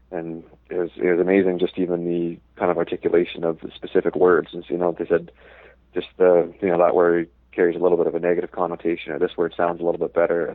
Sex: male